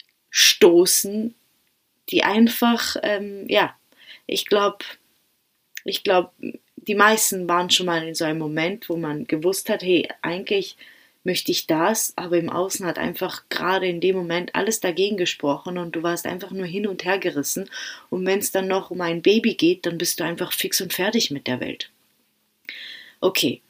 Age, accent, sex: 30-49, German, female